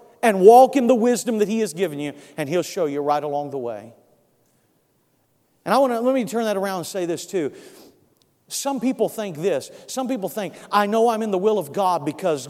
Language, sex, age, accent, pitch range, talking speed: English, male, 40-59, American, 185-235 Hz, 225 wpm